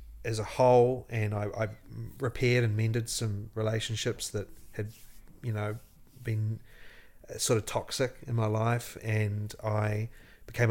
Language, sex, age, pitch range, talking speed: English, male, 30-49, 100-115 Hz, 140 wpm